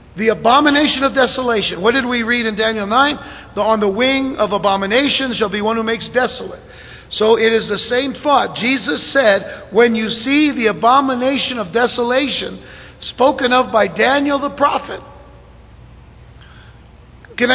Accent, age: American, 50-69